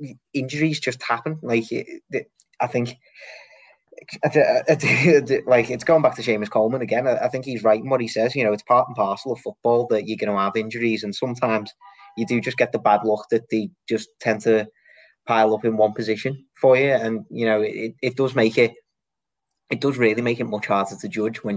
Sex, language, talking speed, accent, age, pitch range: male, English, 210 wpm, British, 20-39, 105-120 Hz